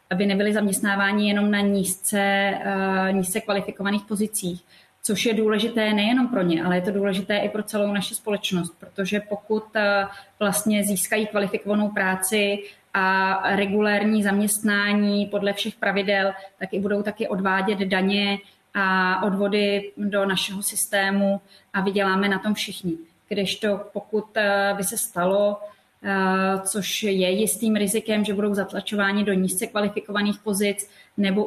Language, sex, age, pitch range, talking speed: Czech, female, 20-39, 195-210 Hz, 130 wpm